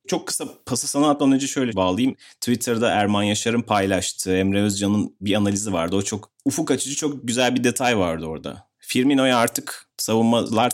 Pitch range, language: 100-125 Hz, Turkish